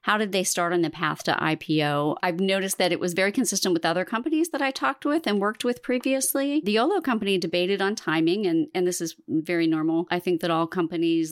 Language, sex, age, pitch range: English, female, 30-49, 170-200 Hz